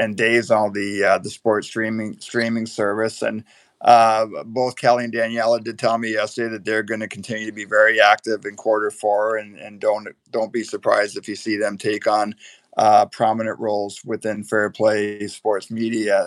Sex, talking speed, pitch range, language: male, 190 wpm, 105-115 Hz, English